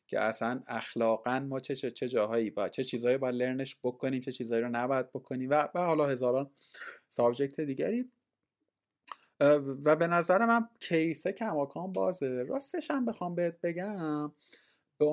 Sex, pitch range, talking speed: male, 120-175 Hz, 145 wpm